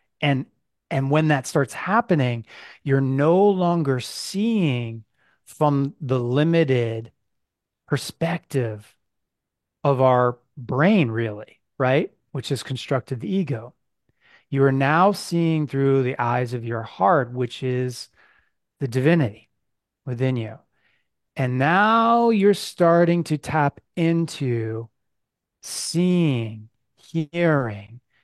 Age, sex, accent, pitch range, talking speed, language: 30-49, male, American, 120-155 Hz, 105 wpm, English